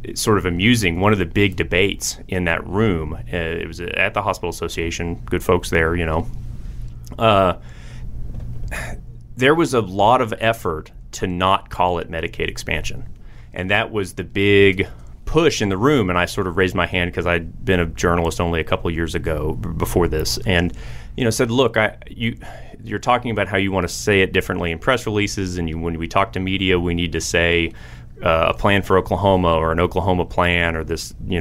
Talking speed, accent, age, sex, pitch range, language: 205 wpm, American, 30-49, male, 85-110 Hz, English